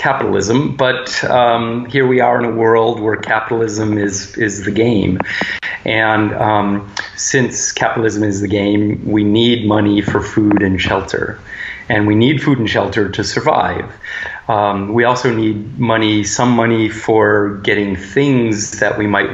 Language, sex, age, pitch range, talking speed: English, male, 30-49, 100-120 Hz, 155 wpm